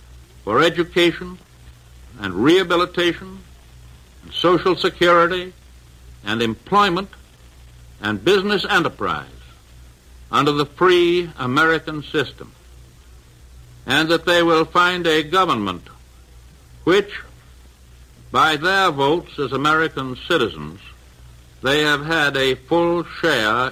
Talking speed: 95 wpm